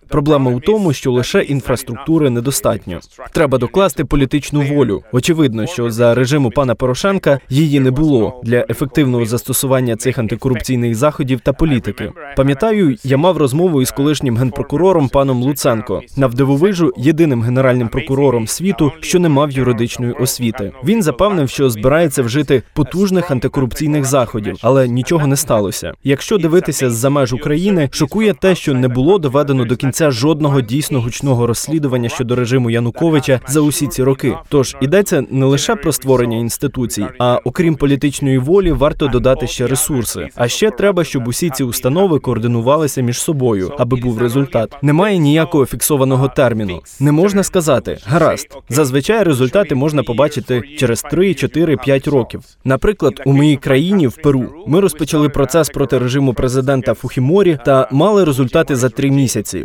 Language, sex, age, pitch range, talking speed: Ukrainian, male, 20-39, 125-155 Hz, 145 wpm